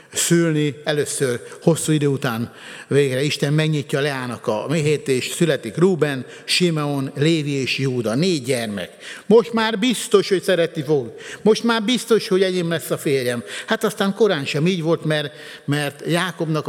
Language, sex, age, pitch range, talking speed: Hungarian, male, 60-79, 140-185 Hz, 155 wpm